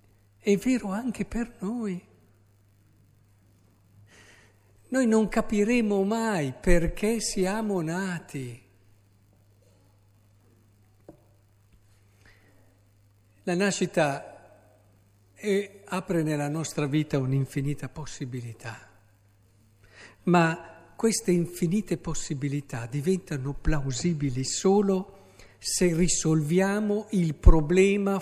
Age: 60-79